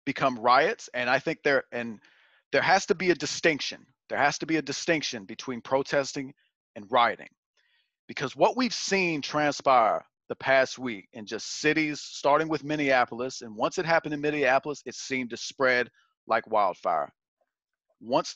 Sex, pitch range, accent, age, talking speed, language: male, 130-155 Hz, American, 40-59, 165 wpm, English